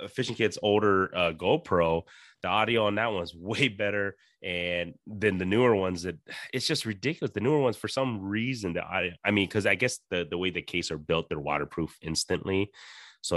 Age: 30-49